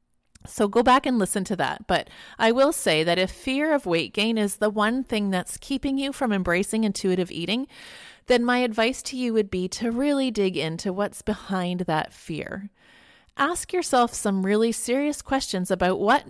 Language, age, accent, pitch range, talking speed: English, 30-49, American, 180-240 Hz, 190 wpm